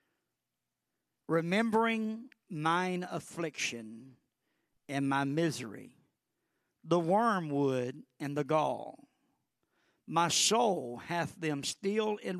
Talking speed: 80 wpm